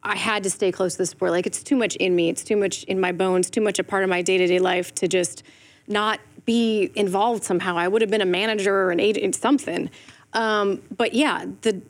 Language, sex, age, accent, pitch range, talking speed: English, female, 30-49, American, 190-230 Hz, 235 wpm